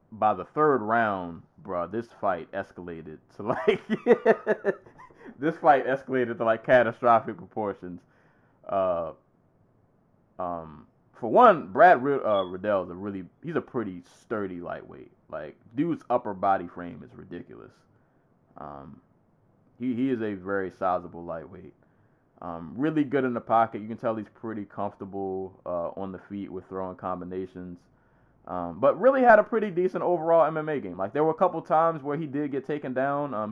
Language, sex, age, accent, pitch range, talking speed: English, male, 20-39, American, 95-130 Hz, 160 wpm